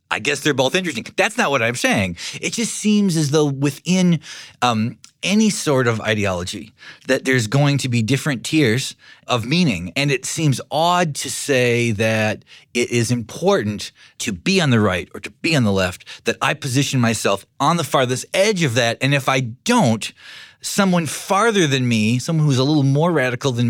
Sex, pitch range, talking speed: male, 120-165 Hz, 190 wpm